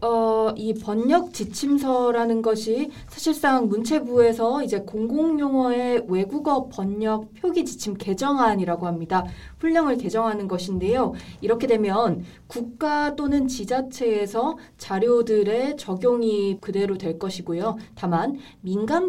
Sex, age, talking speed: female, 20-39, 90 wpm